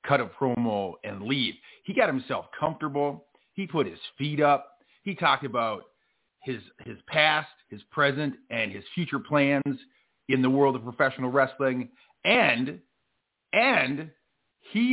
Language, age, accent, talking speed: English, 40-59, American, 140 wpm